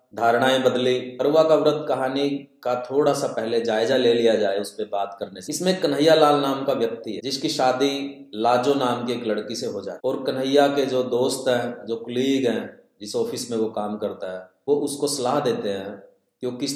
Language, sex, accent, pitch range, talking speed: Hindi, male, native, 110-155 Hz, 210 wpm